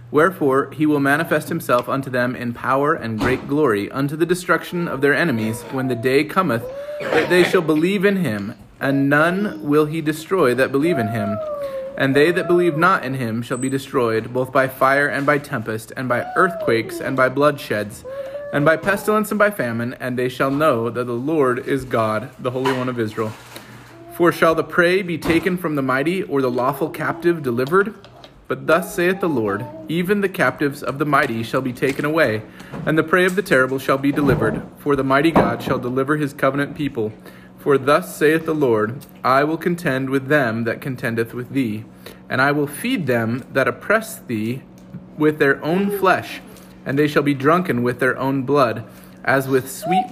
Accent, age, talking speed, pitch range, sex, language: American, 30-49, 195 wpm, 125-165 Hz, male, English